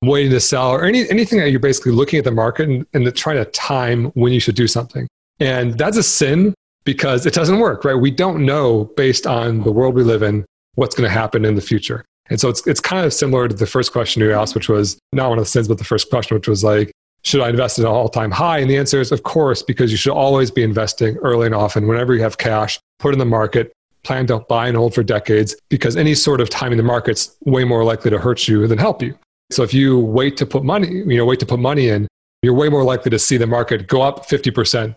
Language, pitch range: English, 115-135 Hz